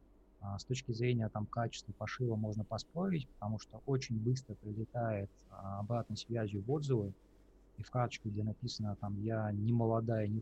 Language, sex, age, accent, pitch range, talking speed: Russian, male, 20-39, native, 100-120 Hz, 155 wpm